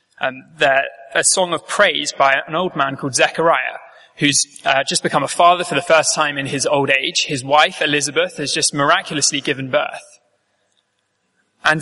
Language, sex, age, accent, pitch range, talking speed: English, male, 20-39, British, 145-190 Hz, 175 wpm